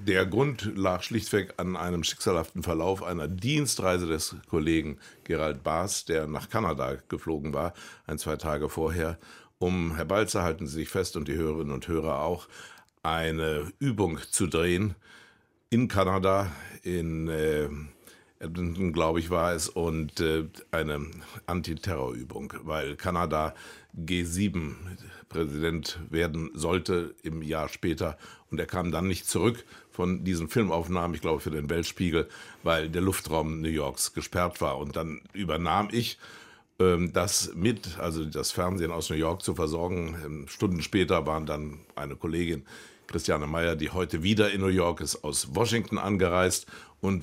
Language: German